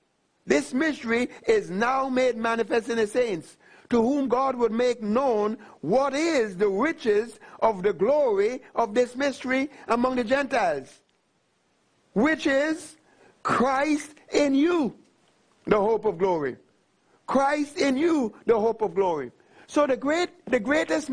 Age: 60-79